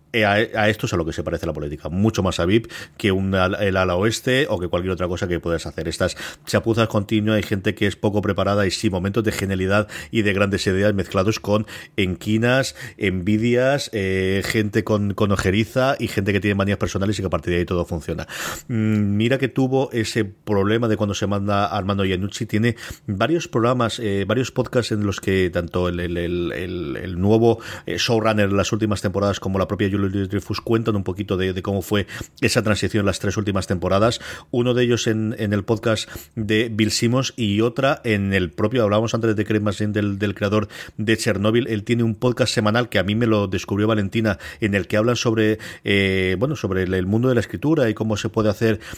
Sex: male